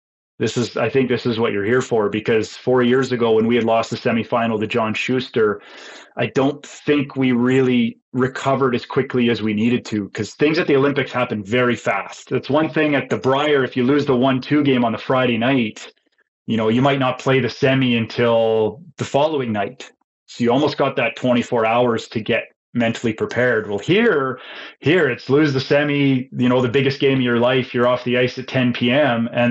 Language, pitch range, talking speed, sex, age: English, 120-135 Hz, 215 wpm, male, 30-49